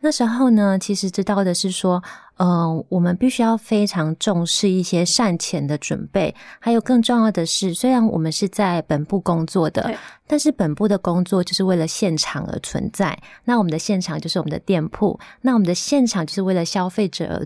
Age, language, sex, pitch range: 20-39, Chinese, female, 165-215 Hz